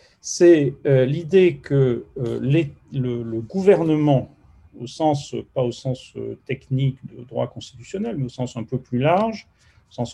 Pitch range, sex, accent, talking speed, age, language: 125-160 Hz, male, French, 160 wpm, 40-59, French